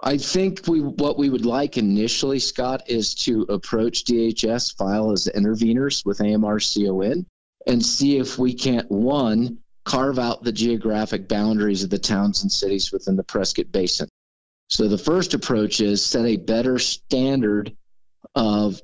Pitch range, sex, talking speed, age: 100-120 Hz, male, 150 wpm, 50-69